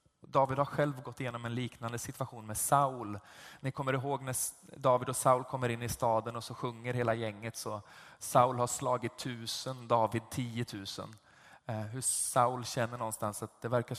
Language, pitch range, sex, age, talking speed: Swedish, 115-135 Hz, male, 20-39, 170 wpm